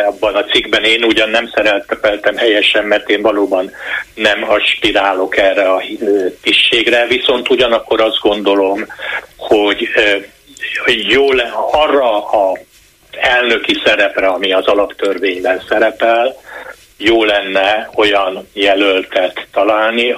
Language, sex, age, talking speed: Hungarian, male, 60-79, 110 wpm